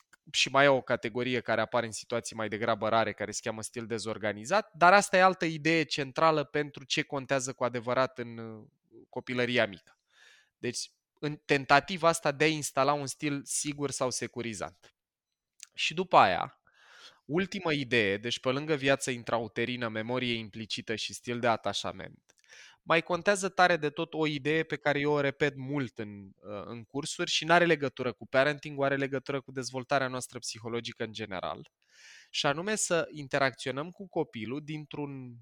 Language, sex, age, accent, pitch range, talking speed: Romanian, male, 20-39, native, 115-150 Hz, 165 wpm